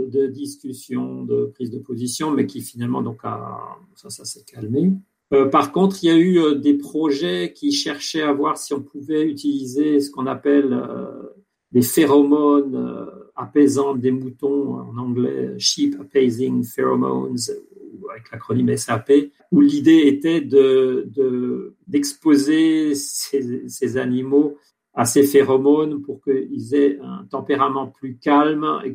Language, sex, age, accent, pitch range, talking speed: French, male, 50-69, French, 130-145 Hz, 145 wpm